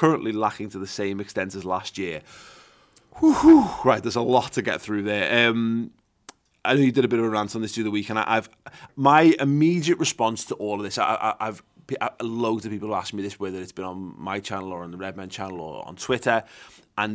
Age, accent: 20-39, British